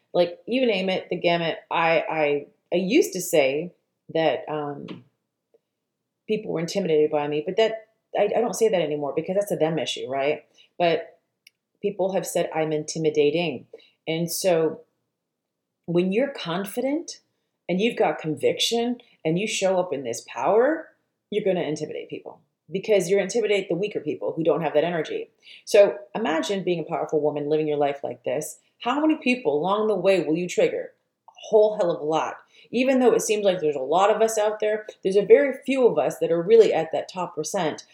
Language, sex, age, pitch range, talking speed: English, female, 30-49, 160-220 Hz, 195 wpm